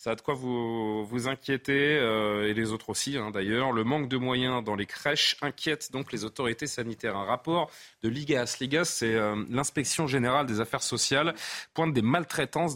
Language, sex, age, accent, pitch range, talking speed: French, male, 30-49, French, 115-145 Hz, 195 wpm